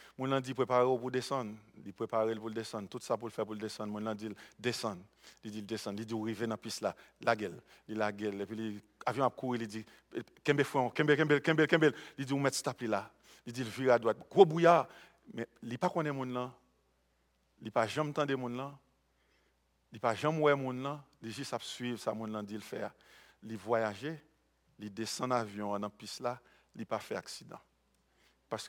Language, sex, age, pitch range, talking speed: English, male, 50-69, 110-140 Hz, 180 wpm